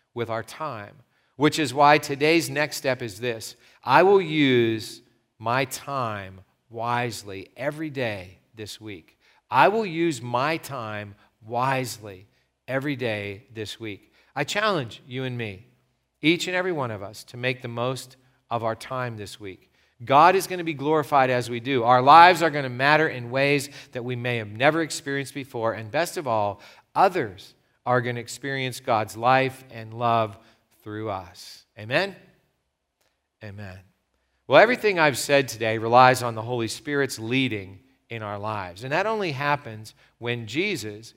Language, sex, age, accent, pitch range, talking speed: English, male, 40-59, American, 115-140 Hz, 165 wpm